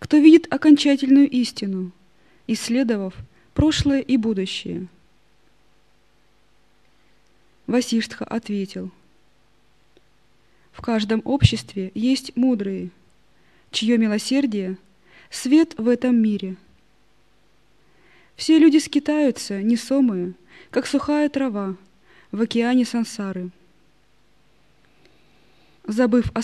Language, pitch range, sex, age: Russian, 190-265 Hz, female, 20-39